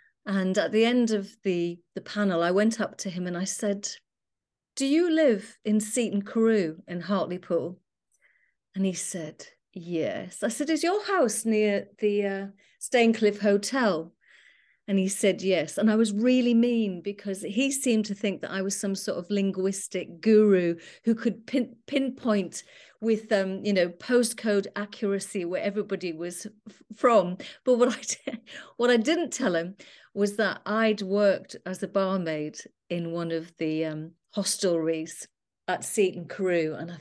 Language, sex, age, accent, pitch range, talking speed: English, female, 40-59, British, 185-225 Hz, 165 wpm